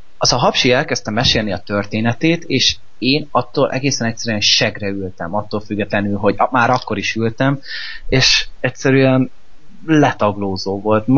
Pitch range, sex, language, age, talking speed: 105-130 Hz, male, Hungarian, 20-39, 130 wpm